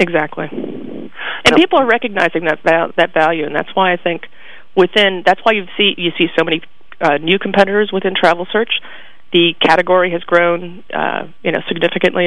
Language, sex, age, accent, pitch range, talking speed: English, female, 30-49, American, 170-200 Hz, 175 wpm